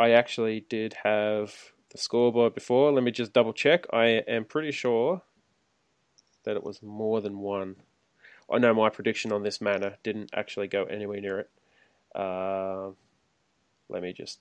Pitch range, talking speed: 105-135 Hz, 160 wpm